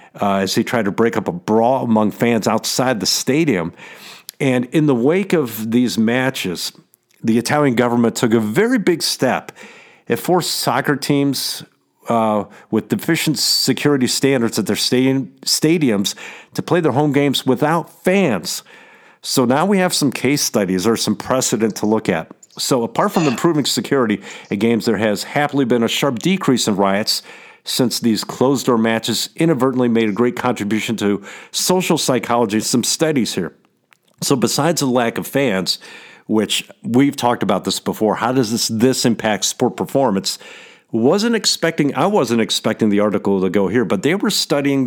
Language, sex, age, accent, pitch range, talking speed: English, male, 50-69, American, 110-145 Hz, 170 wpm